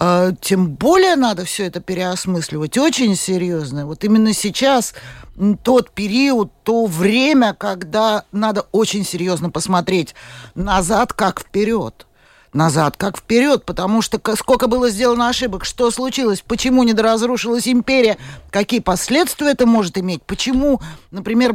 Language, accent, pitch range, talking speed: Russian, native, 180-230 Hz, 125 wpm